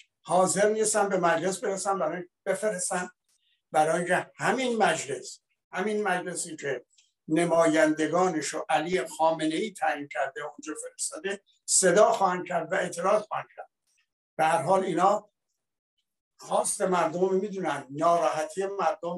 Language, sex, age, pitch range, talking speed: Persian, male, 60-79, 155-195 Hz, 110 wpm